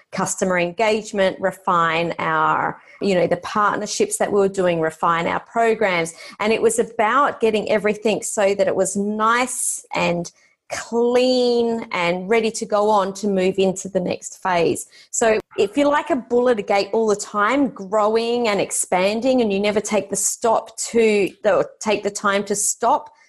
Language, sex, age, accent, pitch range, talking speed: English, female, 30-49, Australian, 185-230 Hz, 165 wpm